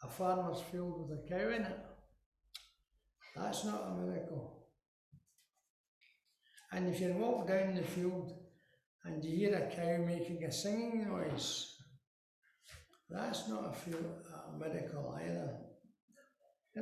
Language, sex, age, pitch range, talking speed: English, male, 60-79, 155-195 Hz, 120 wpm